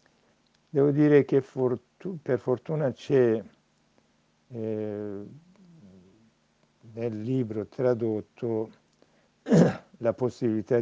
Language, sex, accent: Italian, male, native